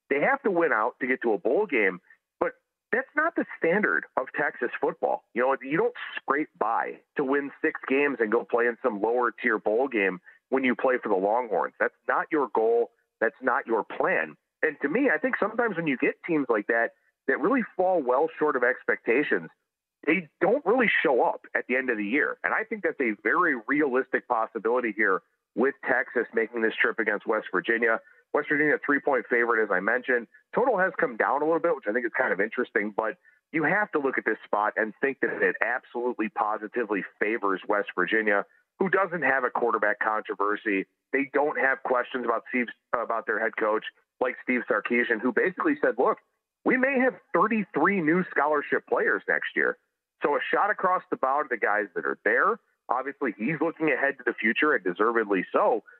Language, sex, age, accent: English, male, 40-59, American